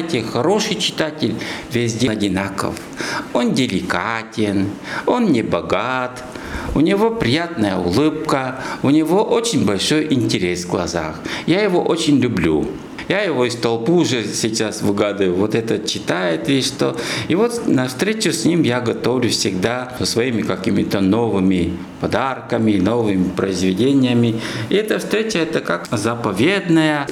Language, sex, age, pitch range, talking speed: Russian, male, 60-79, 105-160 Hz, 130 wpm